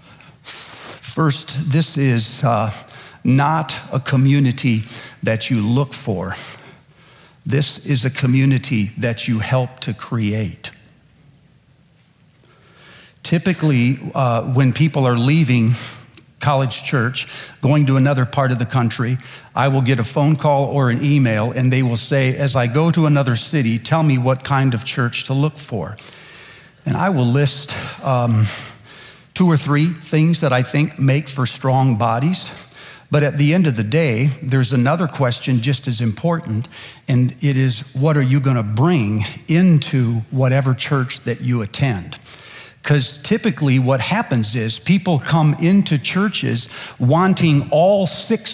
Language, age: English, 60-79